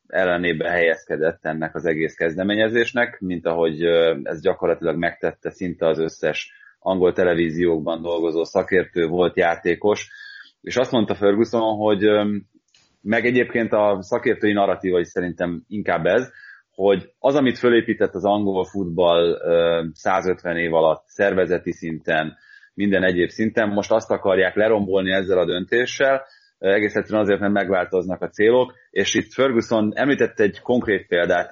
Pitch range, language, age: 90-110 Hz, Hungarian, 30-49